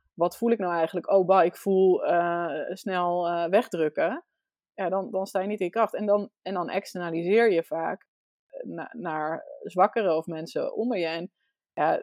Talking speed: 190 wpm